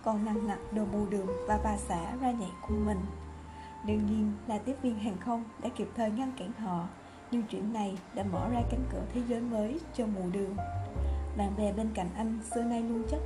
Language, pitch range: Vietnamese, 190-235 Hz